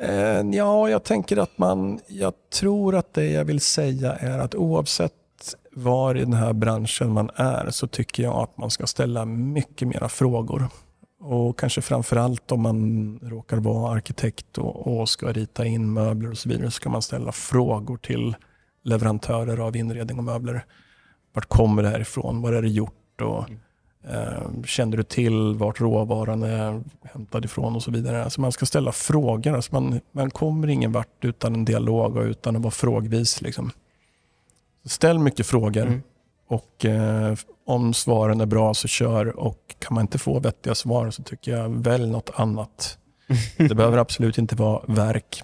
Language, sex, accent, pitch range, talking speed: Swedish, male, native, 110-125 Hz, 165 wpm